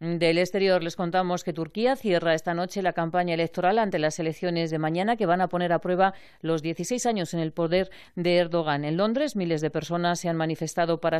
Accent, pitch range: Spanish, 165-200 Hz